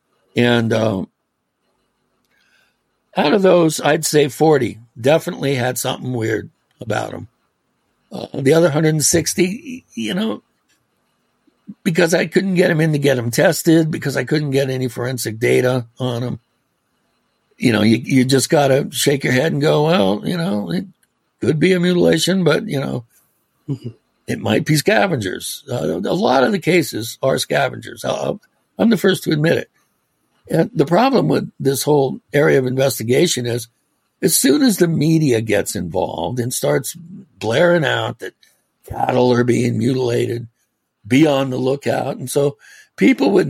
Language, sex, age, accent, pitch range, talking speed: English, male, 60-79, American, 125-175 Hz, 155 wpm